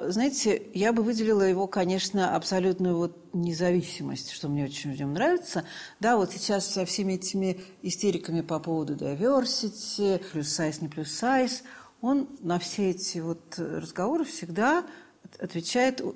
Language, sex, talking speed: Russian, female, 130 wpm